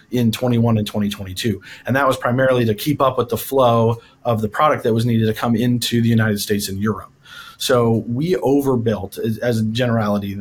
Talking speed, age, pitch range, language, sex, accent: 200 wpm, 30-49, 110-125 Hz, English, male, American